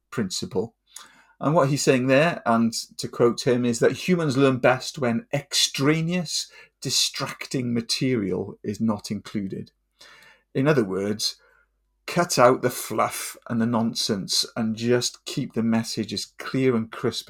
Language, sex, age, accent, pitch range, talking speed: English, male, 40-59, British, 115-155 Hz, 140 wpm